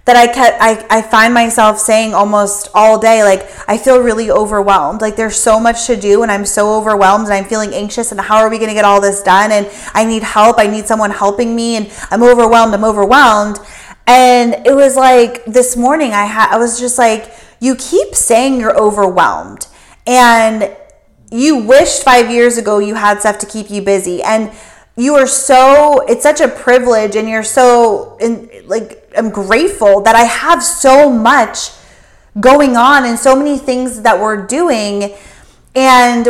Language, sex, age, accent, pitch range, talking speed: English, female, 30-49, American, 210-250 Hz, 185 wpm